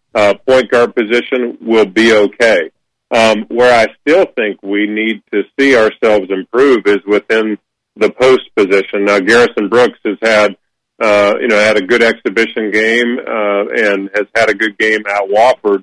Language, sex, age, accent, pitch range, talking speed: English, male, 40-59, American, 105-120 Hz, 170 wpm